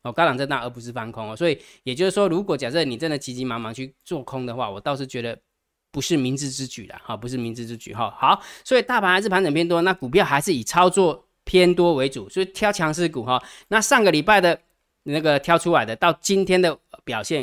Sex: male